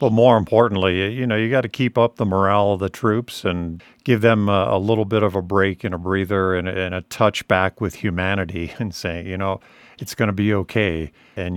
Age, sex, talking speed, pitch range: 50-69, male, 240 wpm, 95-115 Hz